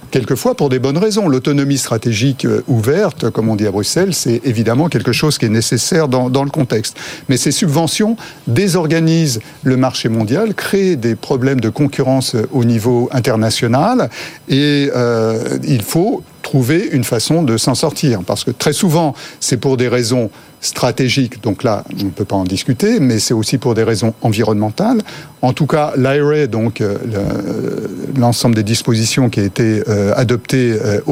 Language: French